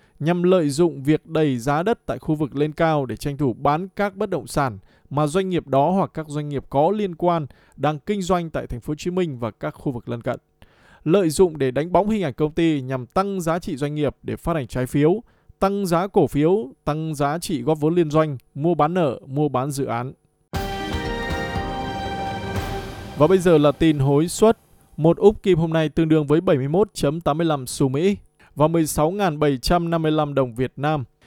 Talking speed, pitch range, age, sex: 205 wpm, 140-180 Hz, 20-39, male